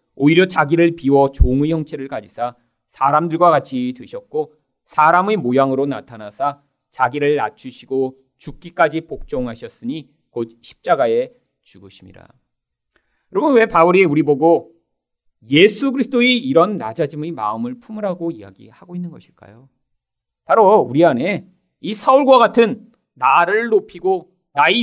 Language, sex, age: Korean, male, 40-59